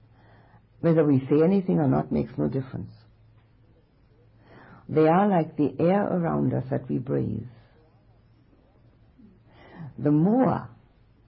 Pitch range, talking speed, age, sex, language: 120-155 Hz, 110 wpm, 60-79, female, English